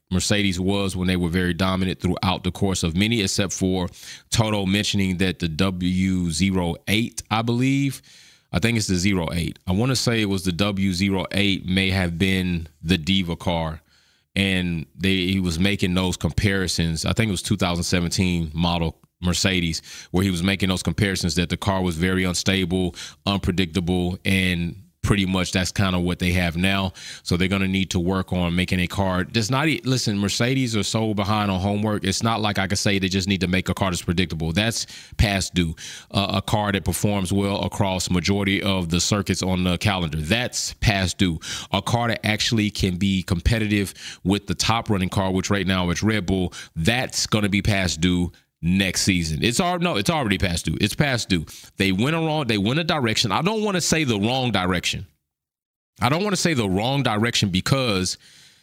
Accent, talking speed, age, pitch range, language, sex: American, 200 wpm, 20-39, 90-110 Hz, English, male